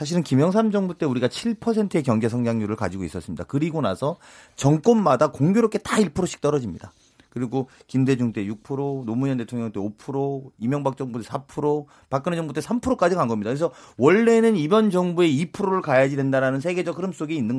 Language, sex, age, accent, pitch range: Korean, male, 40-59, native, 130-200 Hz